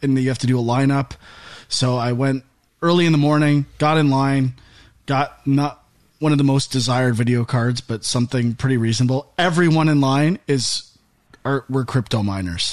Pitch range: 115-145 Hz